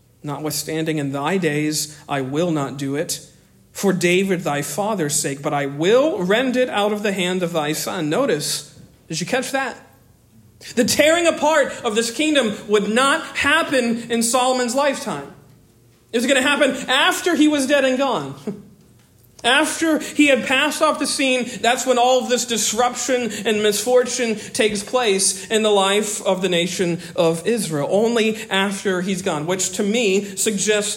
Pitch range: 190-260 Hz